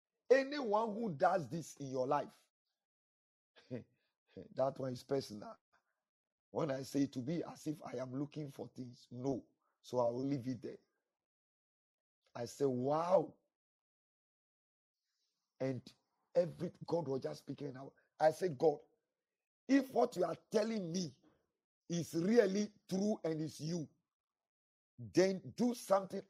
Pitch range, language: 145-195 Hz, English